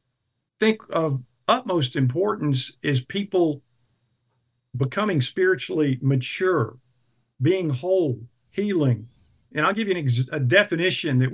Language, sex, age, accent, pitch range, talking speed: English, male, 50-69, American, 125-160 Hz, 100 wpm